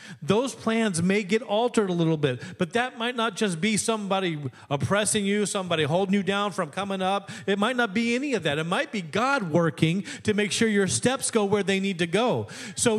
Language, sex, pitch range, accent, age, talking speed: English, male, 195-250 Hz, American, 40-59, 220 wpm